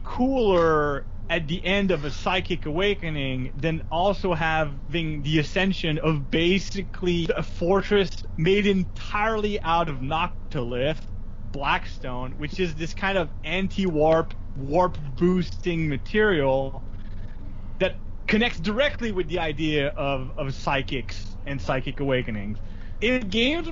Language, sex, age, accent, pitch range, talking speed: English, male, 30-49, American, 140-195 Hz, 115 wpm